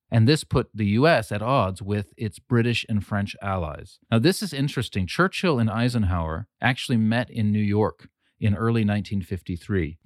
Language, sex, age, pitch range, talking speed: English, male, 40-59, 100-125 Hz, 165 wpm